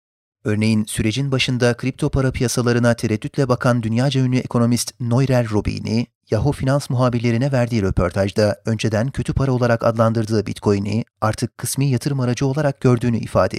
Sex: male